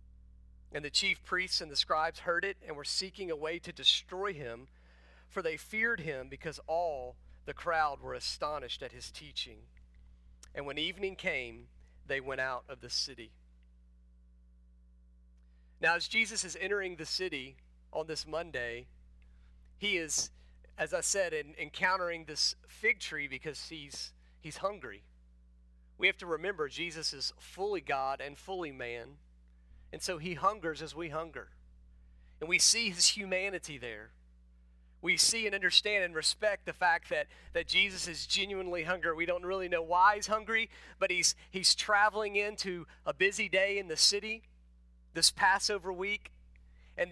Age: 40-59